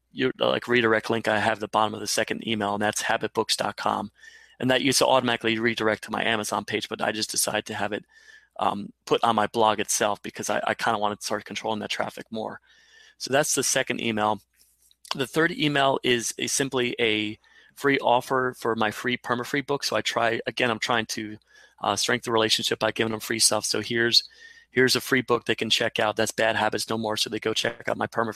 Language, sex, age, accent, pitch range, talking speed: English, male, 30-49, American, 110-125 Hz, 230 wpm